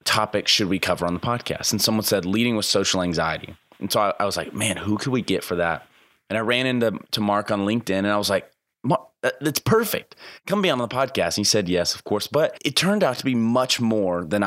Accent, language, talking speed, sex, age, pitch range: American, English, 250 wpm, male, 20-39, 95-115 Hz